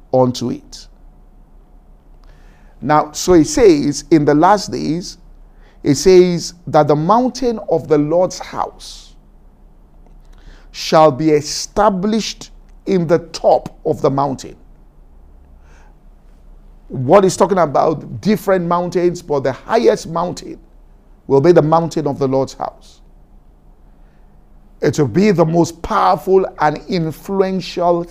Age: 50-69